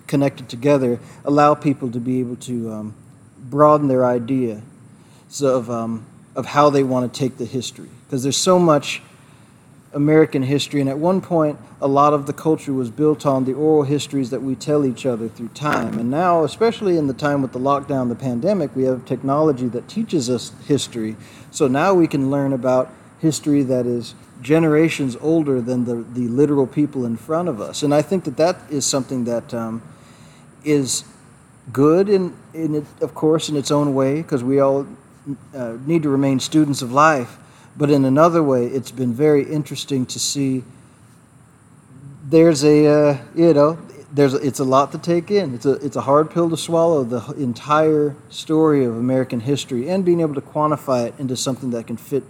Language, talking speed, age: English, 190 wpm, 40-59